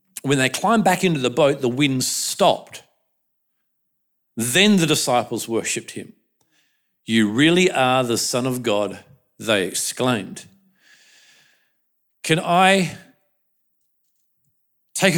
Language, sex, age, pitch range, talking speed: English, male, 50-69, 140-210 Hz, 105 wpm